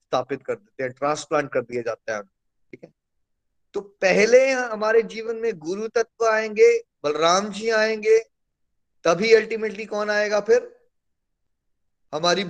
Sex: male